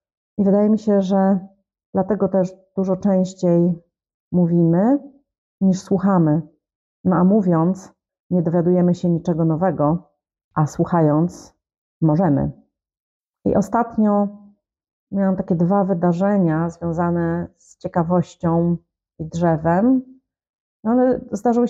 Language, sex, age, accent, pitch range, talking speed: Polish, female, 30-49, native, 170-195 Hz, 100 wpm